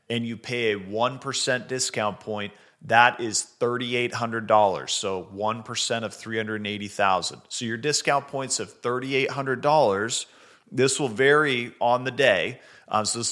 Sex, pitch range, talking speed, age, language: male, 110-130 Hz, 130 wpm, 40-59, English